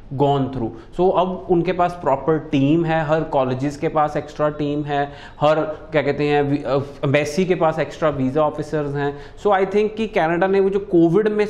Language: Punjabi